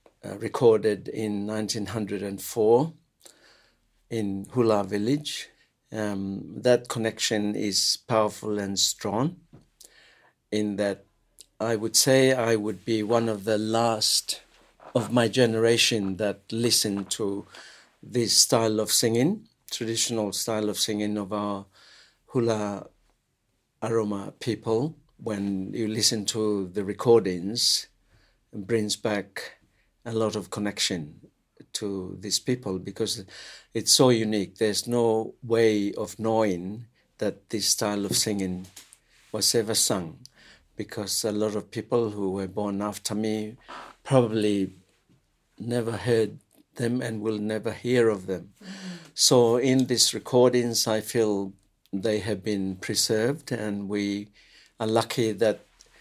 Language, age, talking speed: English, 60-79, 120 wpm